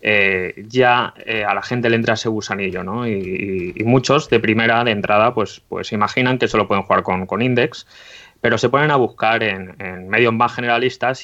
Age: 20-39